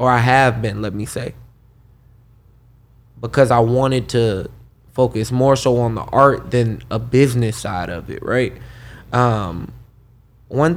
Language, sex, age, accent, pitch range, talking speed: English, male, 20-39, American, 115-130 Hz, 145 wpm